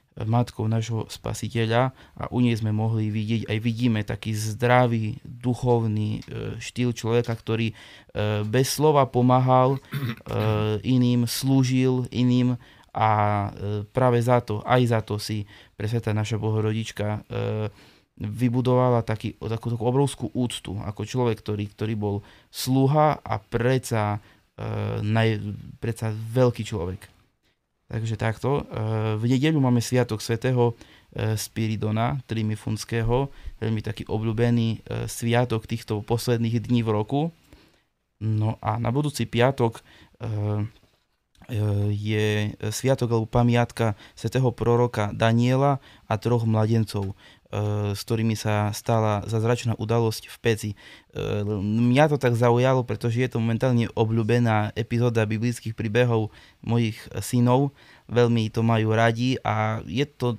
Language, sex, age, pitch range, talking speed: Slovak, male, 20-39, 110-125 Hz, 110 wpm